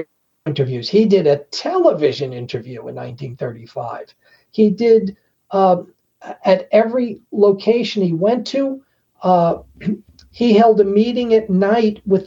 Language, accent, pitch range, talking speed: English, American, 175-220 Hz, 120 wpm